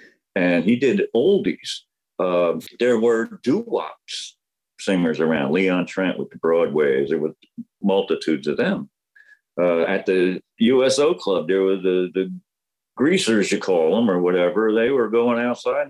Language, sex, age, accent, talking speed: English, male, 50-69, American, 145 wpm